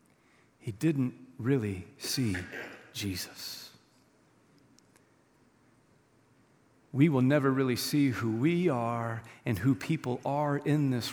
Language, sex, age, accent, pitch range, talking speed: English, male, 40-59, American, 135-175 Hz, 100 wpm